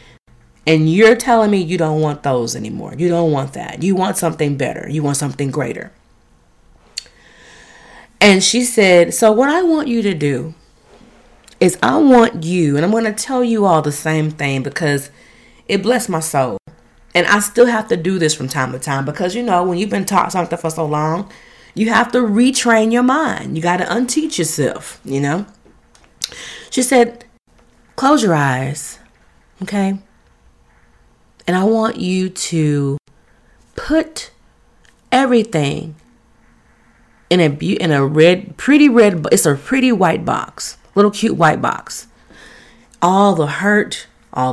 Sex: female